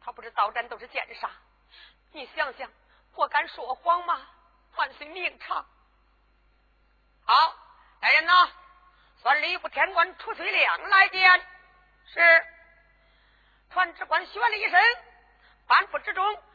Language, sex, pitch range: Chinese, female, 255-365 Hz